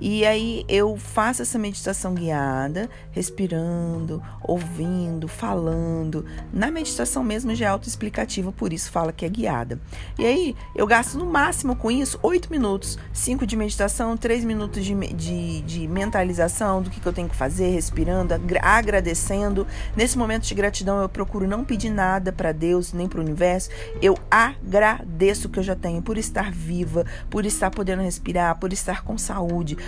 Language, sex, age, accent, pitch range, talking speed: Portuguese, female, 40-59, Brazilian, 165-215 Hz, 165 wpm